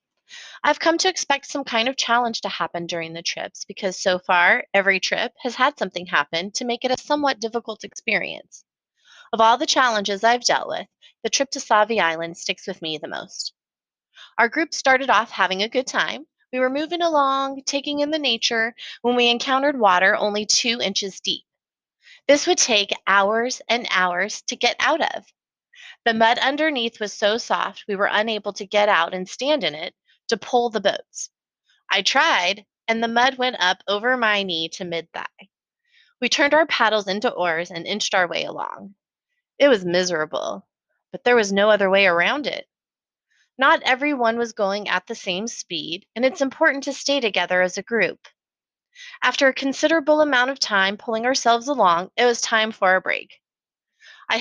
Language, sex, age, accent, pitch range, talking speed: English, female, 30-49, American, 195-270 Hz, 185 wpm